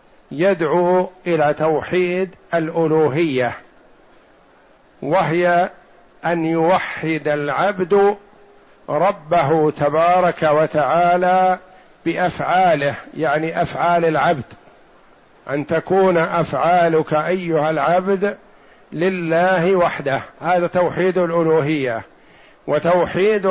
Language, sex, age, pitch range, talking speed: Arabic, male, 60-79, 160-190 Hz, 65 wpm